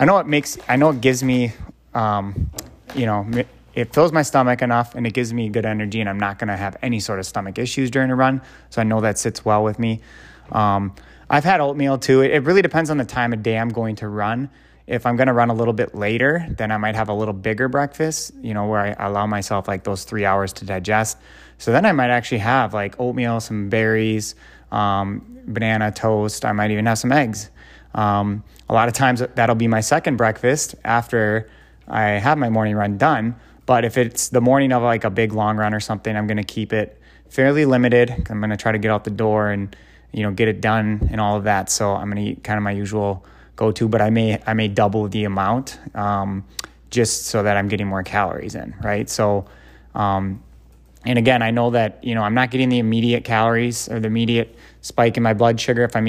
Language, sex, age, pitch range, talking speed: English, male, 20-39, 105-125 Hz, 230 wpm